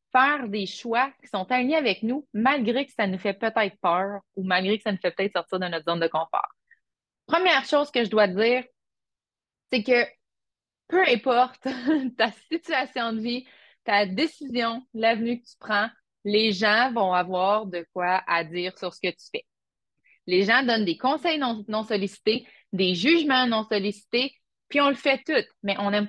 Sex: female